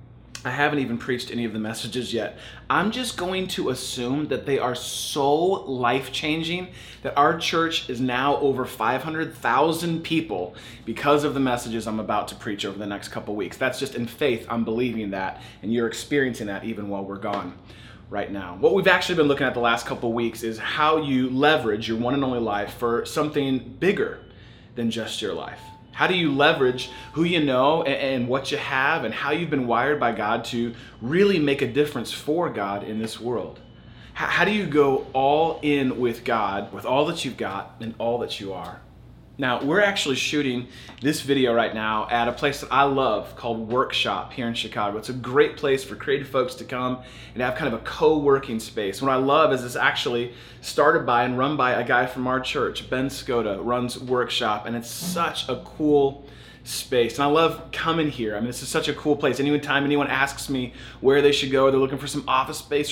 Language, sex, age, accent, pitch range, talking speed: English, male, 20-39, American, 115-145 Hz, 210 wpm